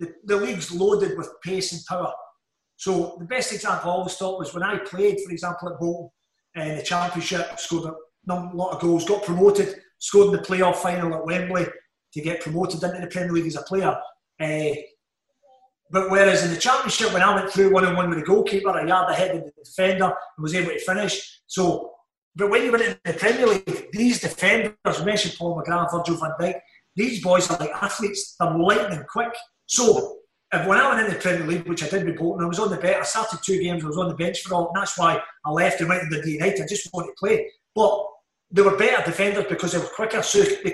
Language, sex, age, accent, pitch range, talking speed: English, male, 30-49, British, 175-210 Hz, 230 wpm